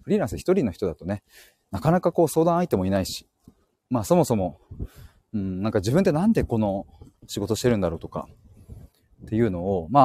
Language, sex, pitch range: Japanese, male, 95-135 Hz